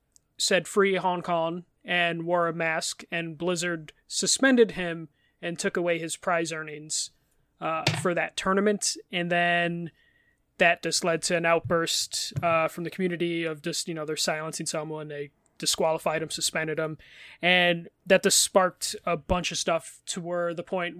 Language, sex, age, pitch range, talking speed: English, male, 20-39, 165-190 Hz, 165 wpm